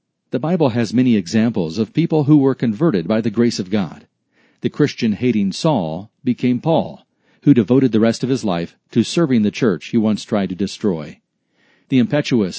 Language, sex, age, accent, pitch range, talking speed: English, male, 40-59, American, 110-140 Hz, 185 wpm